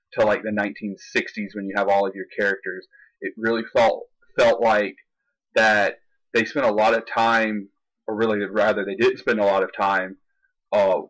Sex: male